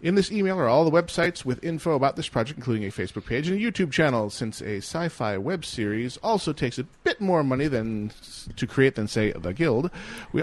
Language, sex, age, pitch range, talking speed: English, male, 40-59, 110-155 Hz, 225 wpm